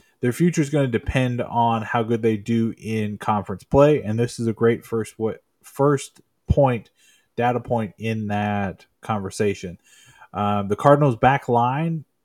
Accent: American